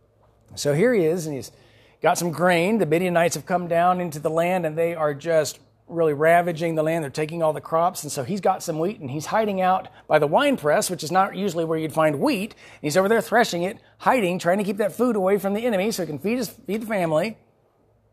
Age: 40-59